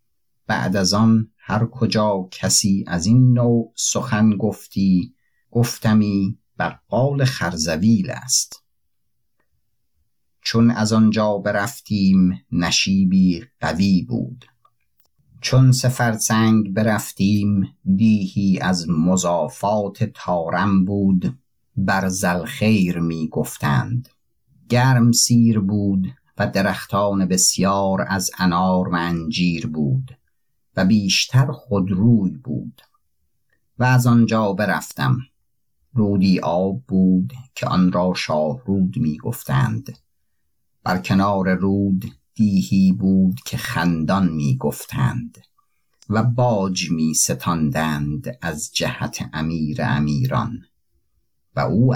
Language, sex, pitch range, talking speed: Persian, male, 90-115 Hz, 90 wpm